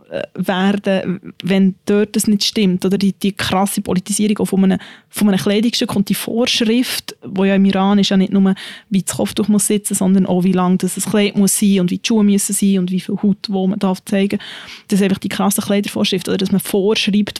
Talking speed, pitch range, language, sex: 230 wpm, 195-215 Hz, German, female